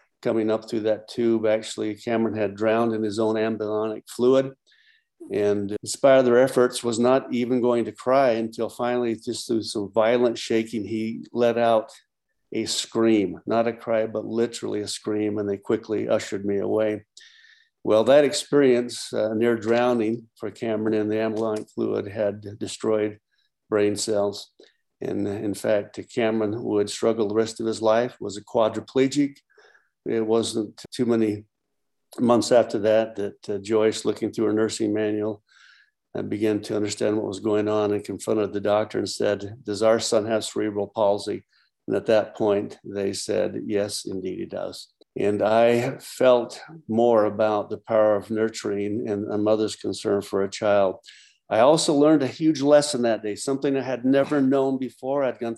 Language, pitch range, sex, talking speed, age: English, 105-120 Hz, male, 170 wpm, 50-69